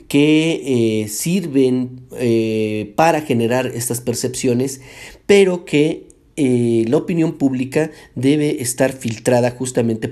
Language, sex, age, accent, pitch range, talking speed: Spanish, male, 40-59, Mexican, 115-140 Hz, 105 wpm